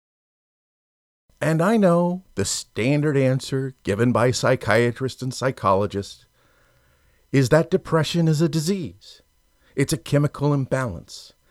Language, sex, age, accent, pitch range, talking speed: English, male, 50-69, American, 100-170 Hz, 110 wpm